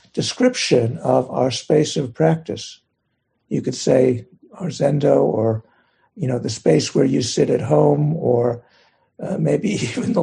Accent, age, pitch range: American, 60-79, 120-160 Hz